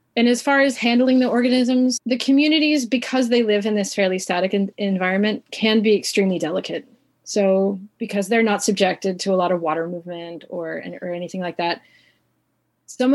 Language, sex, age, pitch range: English, female, 30-49, 180-220 Hz